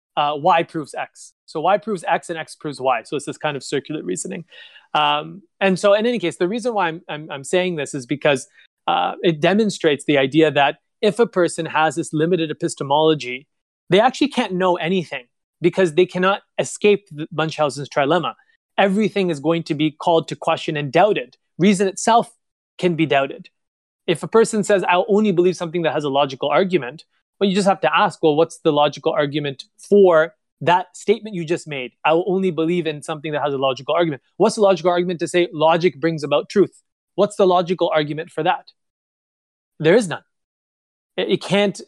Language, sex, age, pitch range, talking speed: English, male, 20-39, 155-195 Hz, 195 wpm